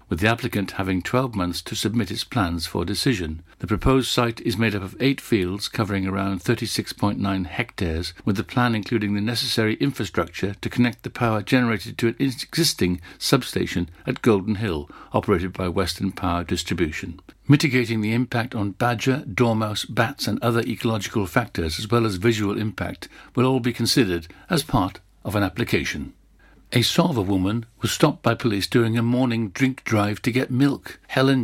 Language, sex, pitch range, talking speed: English, male, 95-120 Hz, 170 wpm